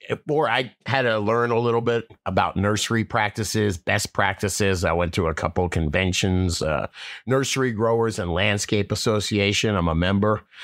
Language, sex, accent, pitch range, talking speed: English, male, American, 100-130 Hz, 165 wpm